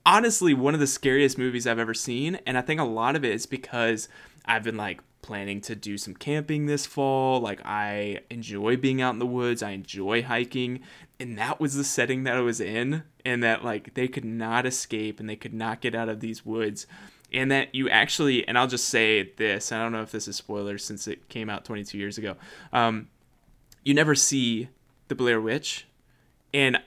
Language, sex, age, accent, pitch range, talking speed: English, male, 20-39, American, 115-140 Hz, 210 wpm